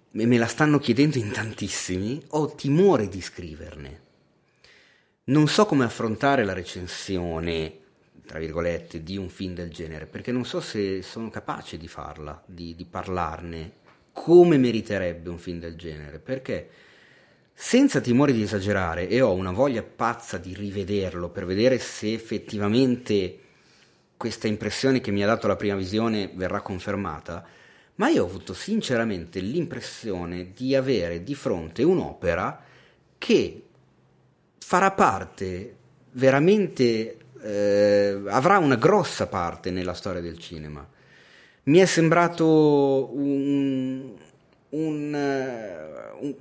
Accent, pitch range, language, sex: native, 90-130 Hz, Italian, male